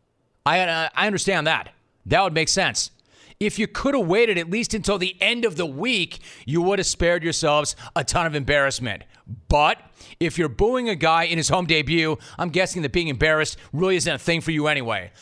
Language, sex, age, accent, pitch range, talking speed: English, male, 30-49, American, 150-190 Hz, 210 wpm